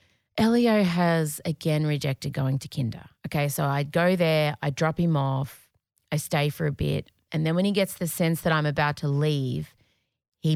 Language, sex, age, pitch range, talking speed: English, female, 30-49, 165-245 Hz, 195 wpm